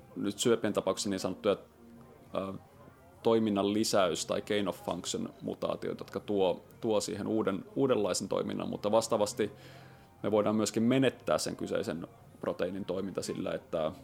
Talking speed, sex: 130 wpm, male